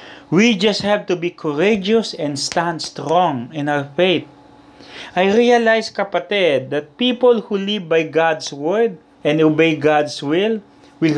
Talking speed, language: 145 wpm, English